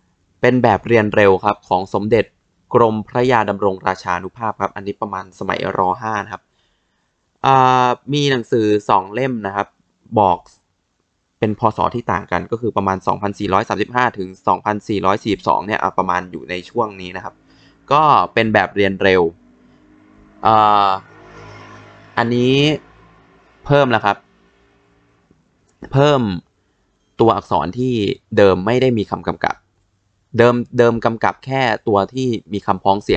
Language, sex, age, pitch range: Thai, male, 20-39, 95-120 Hz